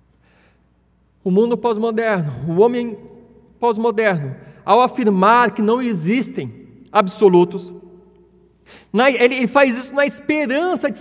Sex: male